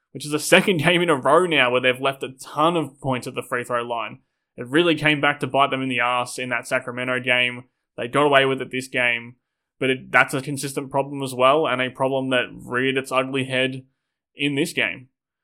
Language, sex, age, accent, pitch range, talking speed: English, male, 20-39, Australian, 125-145 Hz, 235 wpm